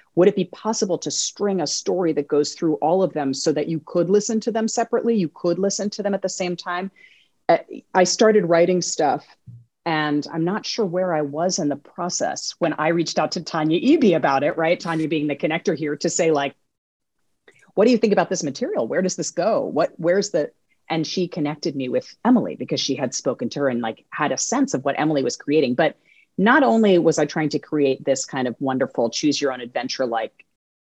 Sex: female